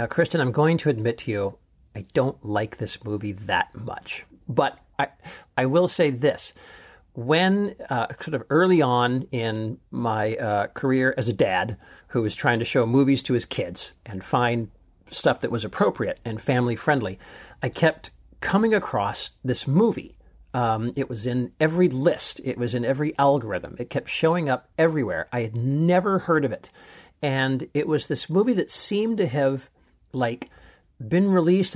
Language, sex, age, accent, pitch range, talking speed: English, male, 50-69, American, 120-160 Hz, 175 wpm